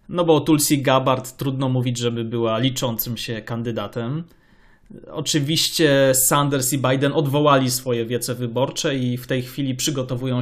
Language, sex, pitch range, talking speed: Polish, male, 125-145 Hz, 145 wpm